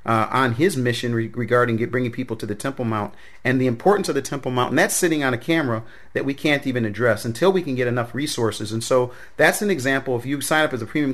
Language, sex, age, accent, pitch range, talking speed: English, male, 40-59, American, 120-150 Hz, 265 wpm